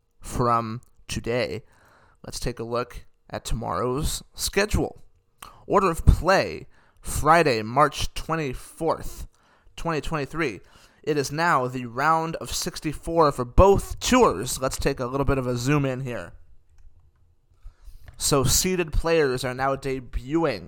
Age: 20-39